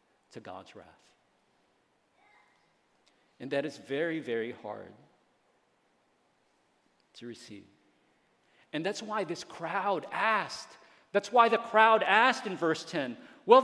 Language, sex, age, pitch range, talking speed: English, male, 40-59, 165-250 Hz, 115 wpm